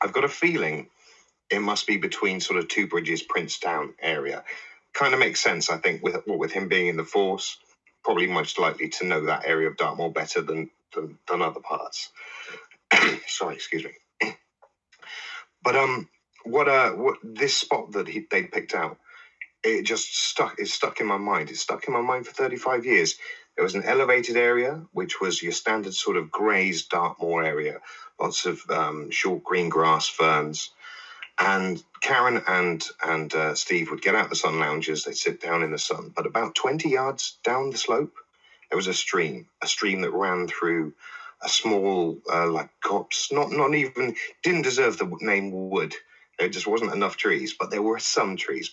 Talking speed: 190 wpm